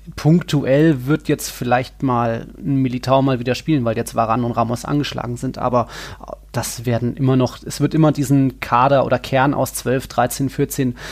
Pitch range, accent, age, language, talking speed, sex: 125-145 Hz, German, 30-49, German, 180 wpm, male